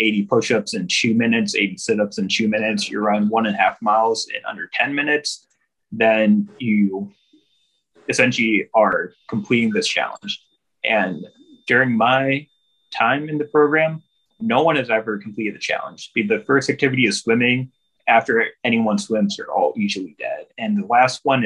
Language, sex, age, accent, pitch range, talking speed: English, male, 20-39, American, 110-145 Hz, 160 wpm